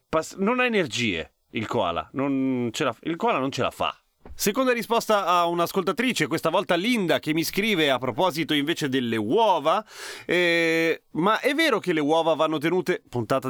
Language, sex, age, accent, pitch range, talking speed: Italian, male, 30-49, native, 120-175 Hz, 180 wpm